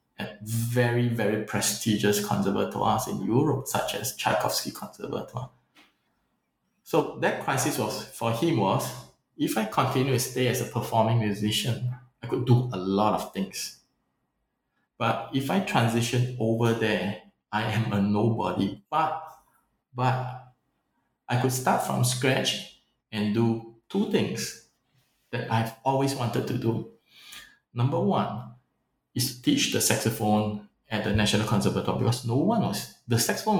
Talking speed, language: 140 wpm, English